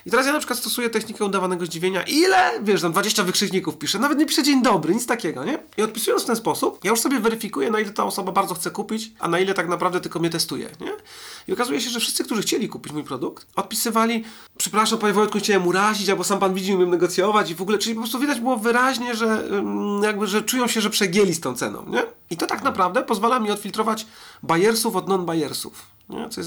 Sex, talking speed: male, 235 wpm